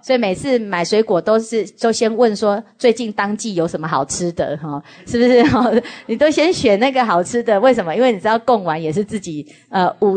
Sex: female